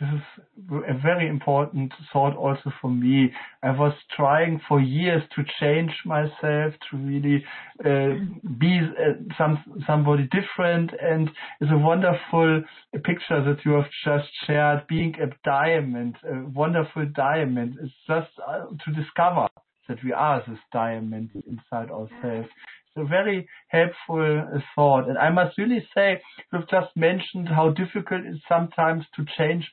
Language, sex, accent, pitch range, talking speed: English, male, German, 140-175 Hz, 145 wpm